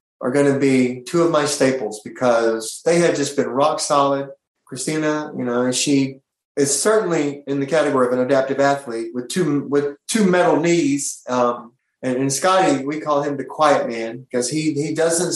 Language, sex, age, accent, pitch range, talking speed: English, male, 30-49, American, 130-160 Hz, 190 wpm